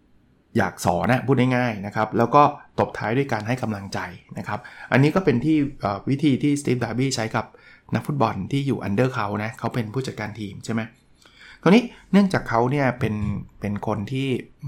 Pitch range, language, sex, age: 110-140 Hz, Thai, male, 20-39